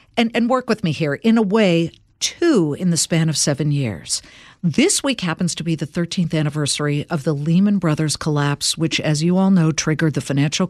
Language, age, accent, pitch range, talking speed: English, 50-69, American, 140-180 Hz, 210 wpm